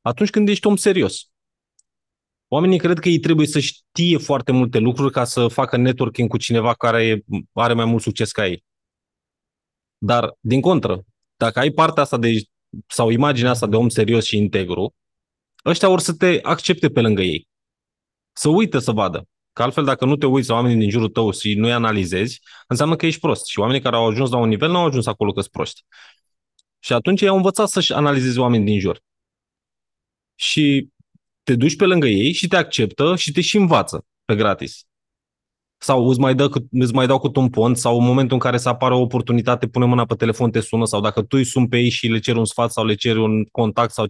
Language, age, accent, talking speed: Romanian, 20-39, native, 215 wpm